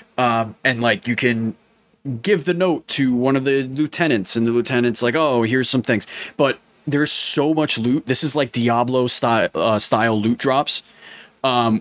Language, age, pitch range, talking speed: English, 30-49, 115-130 Hz, 180 wpm